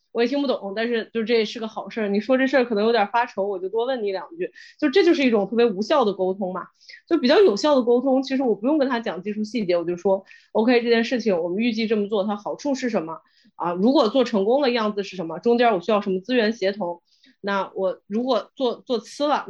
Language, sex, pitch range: Chinese, female, 200-265 Hz